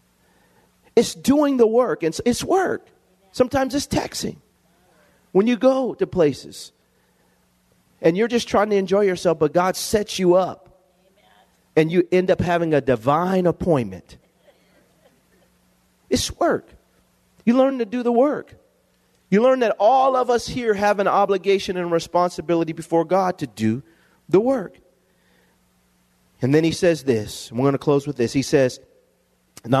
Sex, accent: male, American